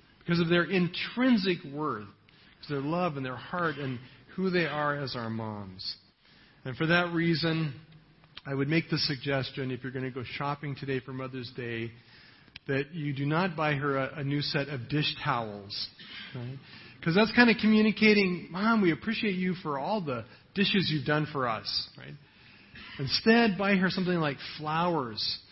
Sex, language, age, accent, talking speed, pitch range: male, English, 40-59, American, 175 wpm, 130-170 Hz